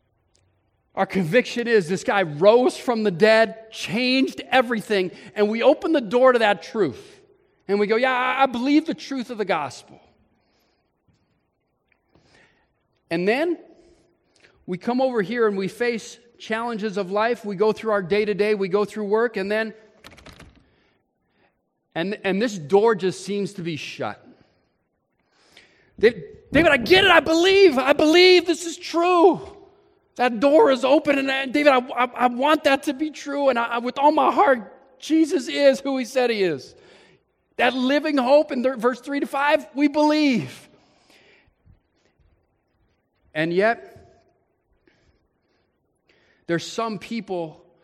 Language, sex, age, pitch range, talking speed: English, male, 40-59, 190-275 Hz, 145 wpm